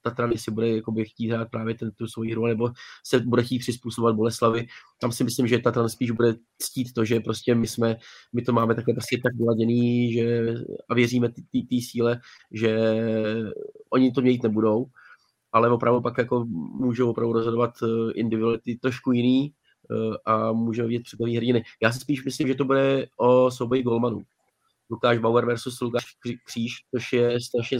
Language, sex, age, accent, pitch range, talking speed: Czech, male, 20-39, native, 115-125 Hz, 170 wpm